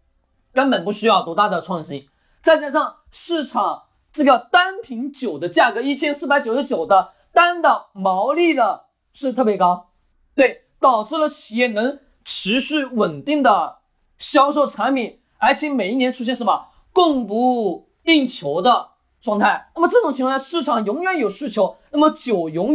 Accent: native